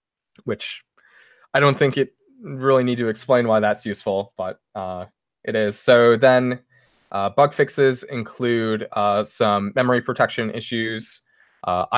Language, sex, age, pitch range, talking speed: English, male, 20-39, 105-125 Hz, 140 wpm